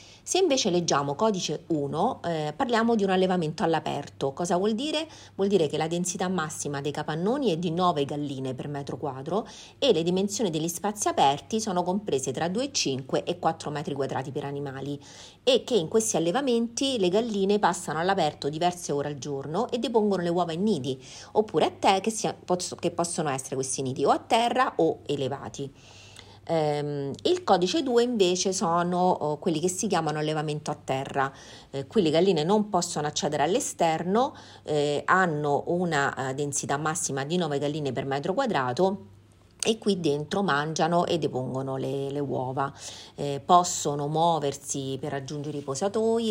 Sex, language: female, Italian